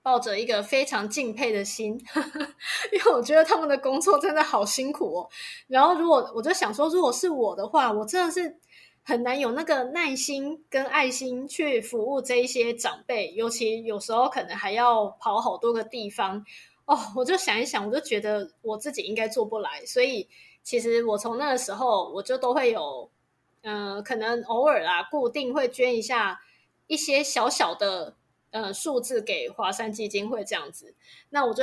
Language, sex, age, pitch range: Chinese, female, 20-39, 225-300 Hz